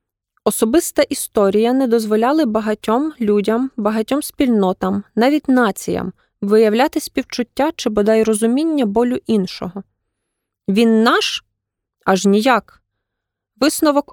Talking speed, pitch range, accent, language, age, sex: 95 wpm, 200-245 Hz, native, Ukrainian, 20-39, female